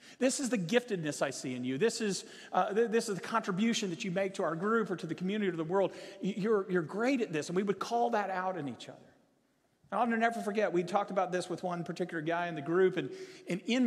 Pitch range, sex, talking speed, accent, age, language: 180-235 Hz, male, 260 wpm, American, 40-59, English